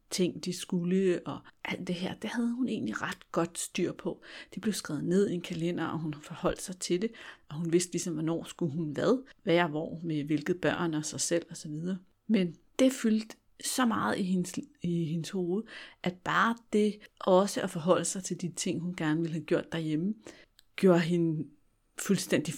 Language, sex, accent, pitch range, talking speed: Danish, female, native, 170-225 Hz, 195 wpm